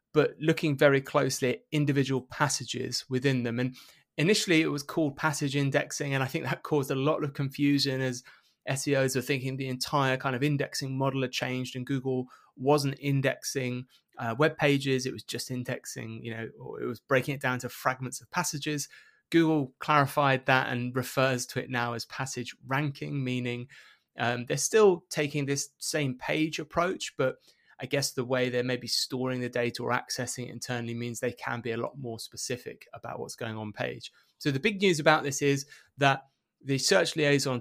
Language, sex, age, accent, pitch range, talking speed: English, male, 20-39, British, 130-150 Hz, 185 wpm